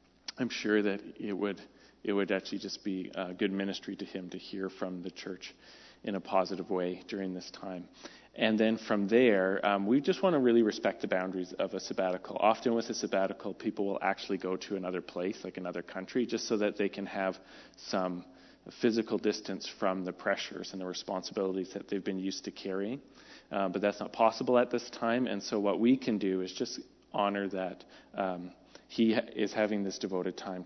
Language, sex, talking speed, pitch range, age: English, male, 200 wpm, 95-110 Hz, 30-49